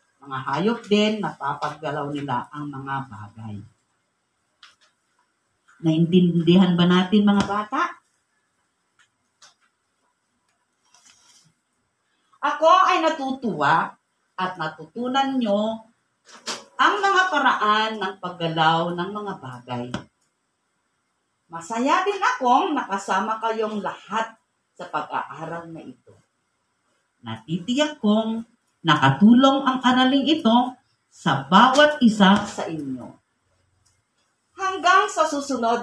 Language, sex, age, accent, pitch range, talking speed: Filipino, female, 40-59, native, 175-275 Hz, 85 wpm